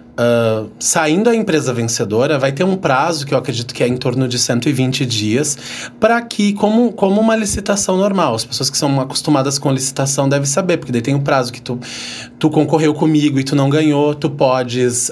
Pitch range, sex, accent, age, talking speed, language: 130-160 Hz, male, Brazilian, 30-49, 205 wpm, Portuguese